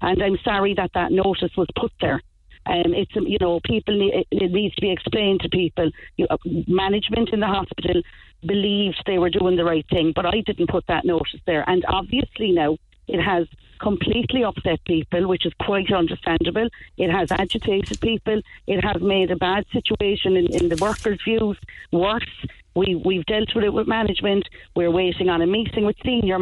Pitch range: 175-210 Hz